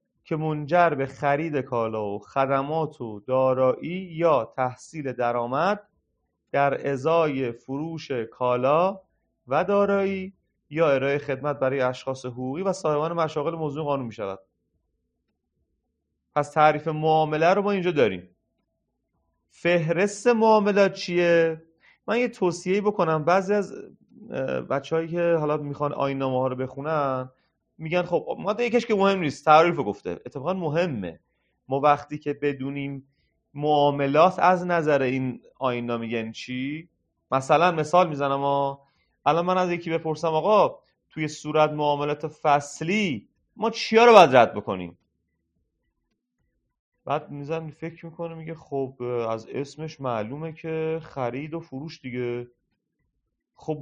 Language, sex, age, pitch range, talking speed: Persian, male, 30-49, 130-170 Hz, 125 wpm